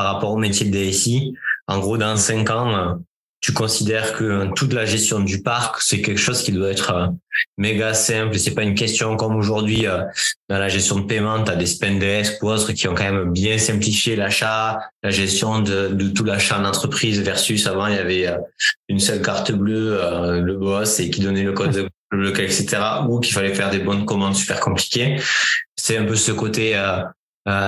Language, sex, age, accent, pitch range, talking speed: French, male, 20-39, French, 95-110 Hz, 200 wpm